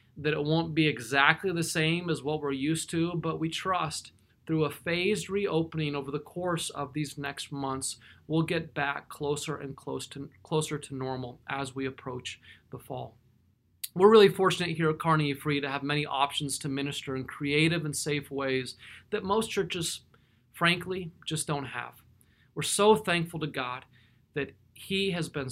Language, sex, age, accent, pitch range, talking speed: English, male, 30-49, American, 130-160 Hz, 170 wpm